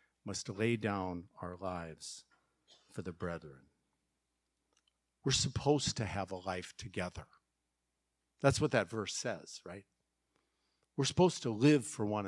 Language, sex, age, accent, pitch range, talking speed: English, male, 50-69, American, 95-145 Hz, 130 wpm